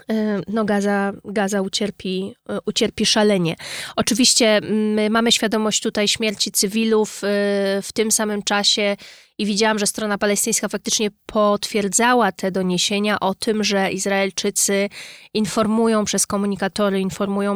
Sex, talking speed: female, 115 wpm